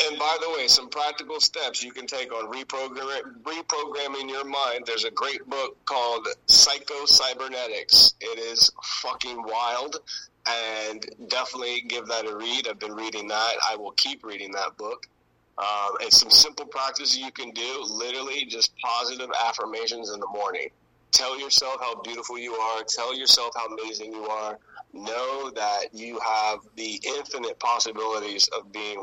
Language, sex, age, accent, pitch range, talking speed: English, male, 30-49, American, 110-155 Hz, 155 wpm